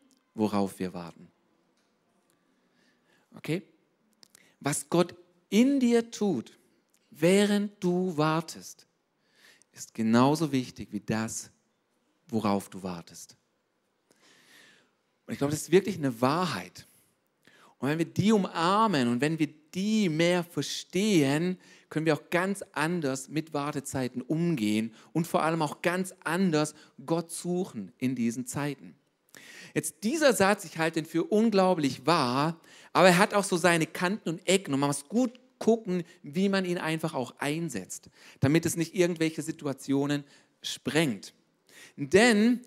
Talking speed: 130 wpm